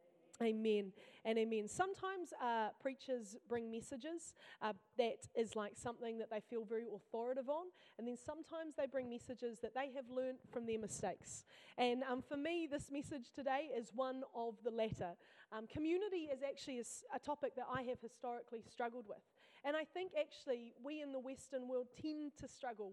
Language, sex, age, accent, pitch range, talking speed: English, female, 30-49, Australian, 245-335 Hz, 180 wpm